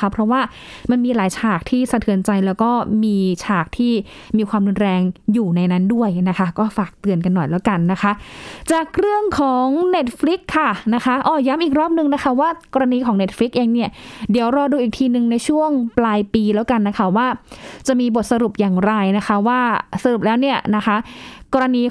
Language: Thai